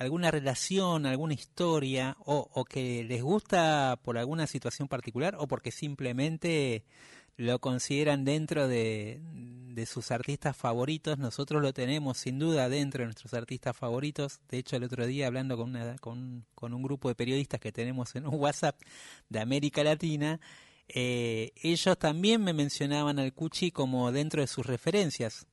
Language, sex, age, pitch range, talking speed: Spanish, male, 30-49, 125-155 Hz, 160 wpm